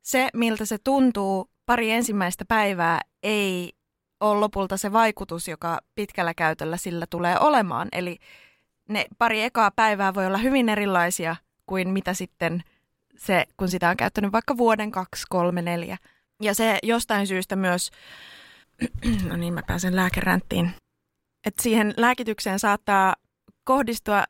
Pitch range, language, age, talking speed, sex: 185-230 Hz, Finnish, 20-39, 135 wpm, female